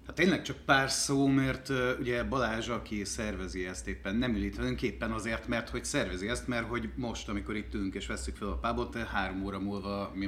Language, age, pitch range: Hungarian, 30-49, 95-120 Hz